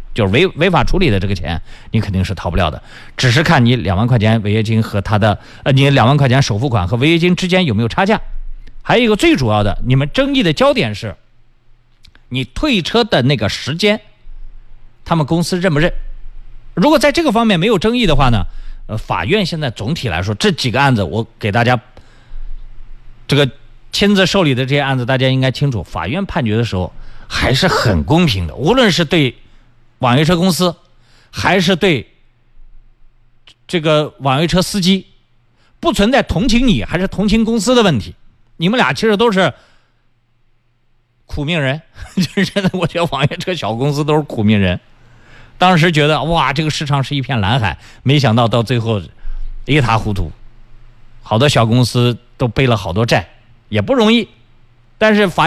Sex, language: male, Chinese